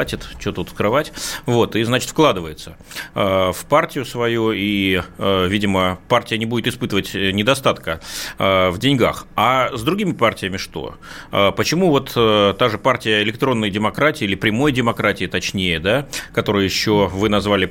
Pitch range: 100-130 Hz